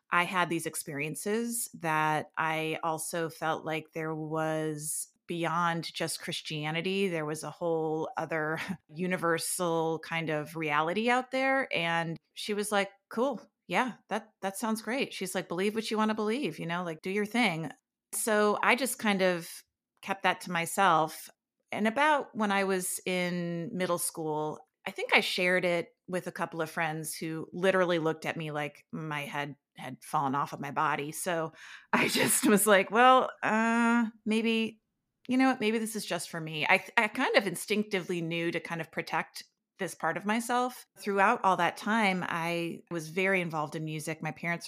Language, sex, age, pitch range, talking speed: English, female, 30-49, 160-210 Hz, 180 wpm